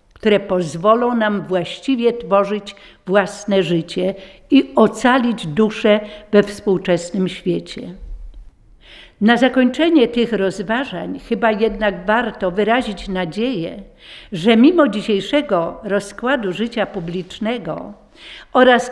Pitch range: 195-240 Hz